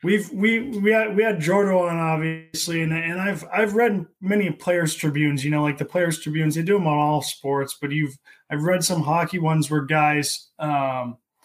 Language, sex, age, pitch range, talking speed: English, male, 20-39, 160-205 Hz, 205 wpm